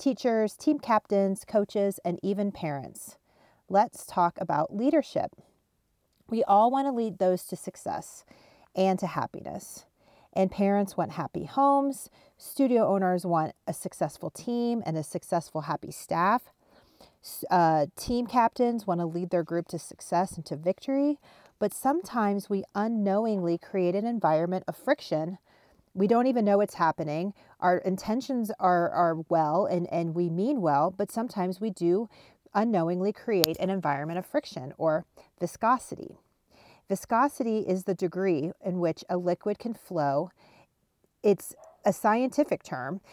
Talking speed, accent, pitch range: 140 wpm, American, 175-225 Hz